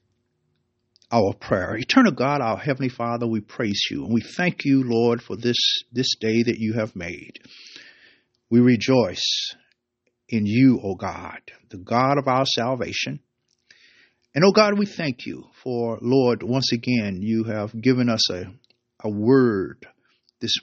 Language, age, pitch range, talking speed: English, 50-69, 110-140 Hz, 155 wpm